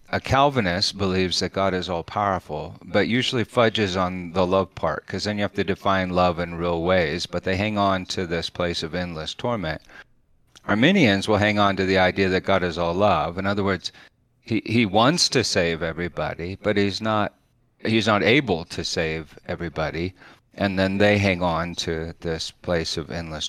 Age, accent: 40-59, American